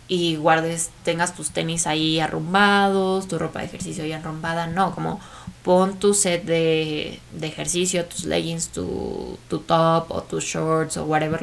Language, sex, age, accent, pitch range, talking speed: Spanish, female, 20-39, Mexican, 155-180 Hz, 165 wpm